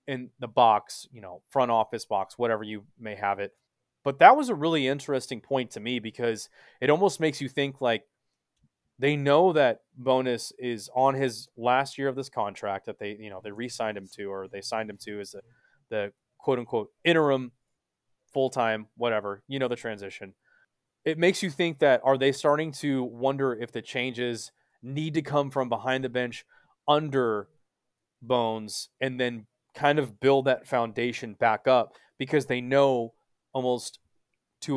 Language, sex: English, male